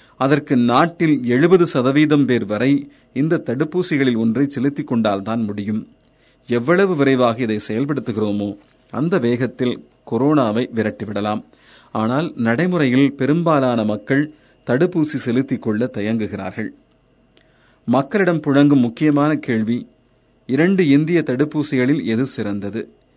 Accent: native